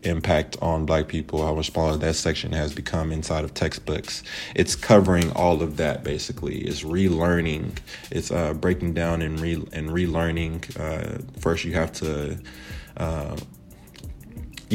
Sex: male